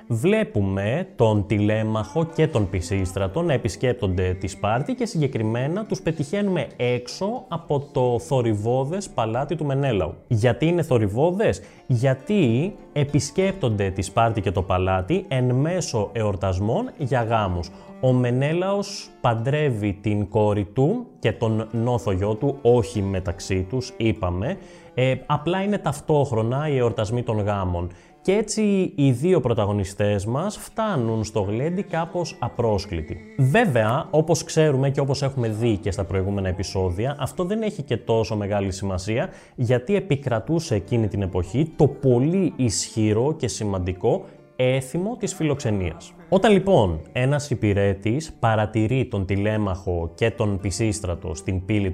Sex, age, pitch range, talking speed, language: male, 20-39, 100-150 Hz, 130 wpm, Greek